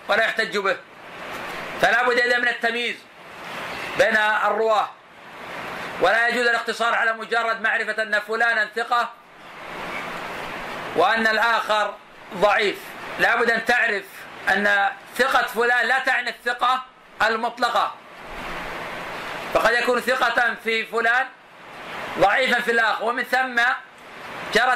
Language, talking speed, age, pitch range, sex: Arabic, 105 wpm, 40-59, 225-245 Hz, male